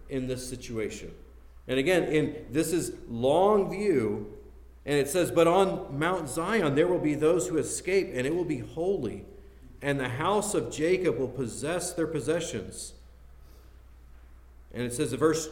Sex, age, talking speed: male, 50-69, 160 wpm